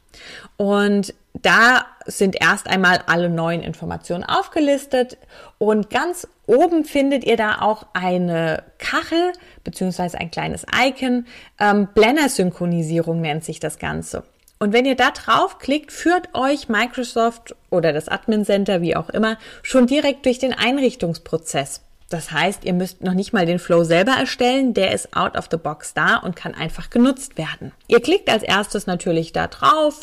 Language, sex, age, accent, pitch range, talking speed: German, female, 20-39, German, 175-245 Hz, 160 wpm